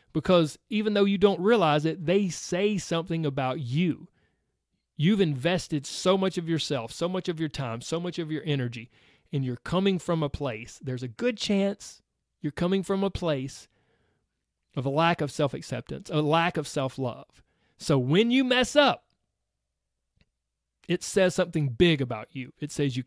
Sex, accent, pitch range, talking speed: male, American, 135-185 Hz, 170 wpm